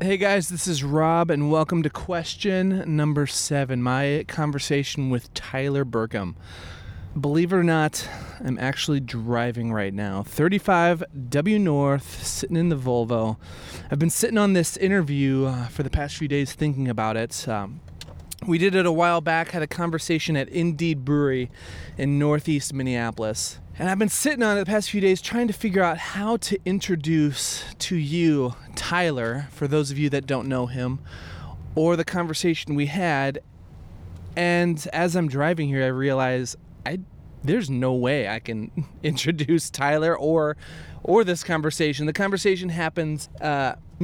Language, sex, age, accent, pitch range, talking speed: English, male, 20-39, American, 125-170 Hz, 160 wpm